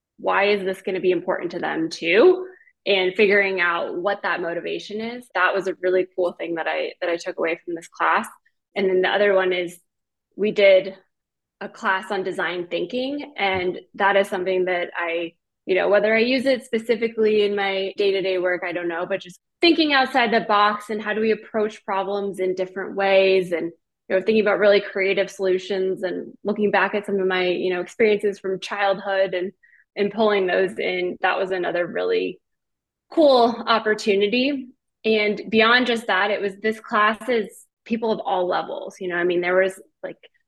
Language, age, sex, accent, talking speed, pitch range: English, 20-39, female, American, 195 wpm, 180-210 Hz